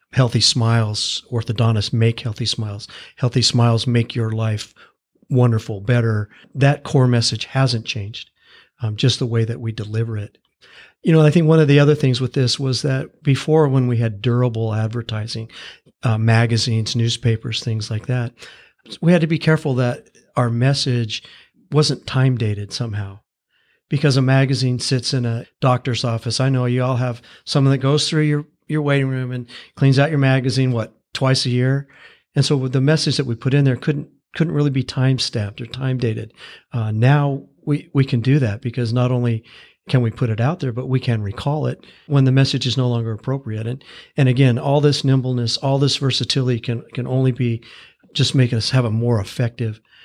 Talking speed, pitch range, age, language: 190 wpm, 115-135 Hz, 40-59, English